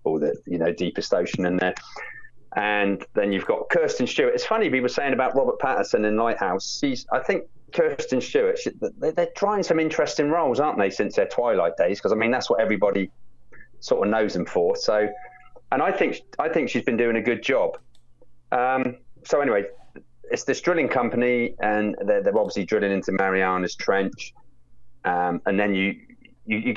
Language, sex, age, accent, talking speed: English, male, 30-49, British, 190 wpm